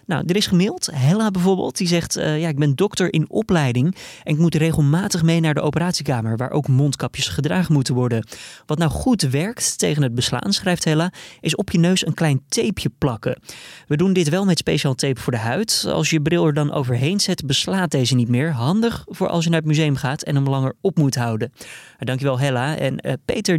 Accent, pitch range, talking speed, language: Dutch, 135-175 Hz, 220 wpm, Dutch